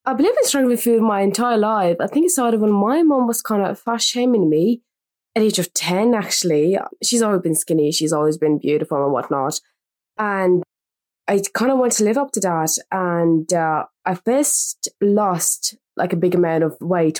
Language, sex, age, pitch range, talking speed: English, female, 20-39, 180-235 Hz, 200 wpm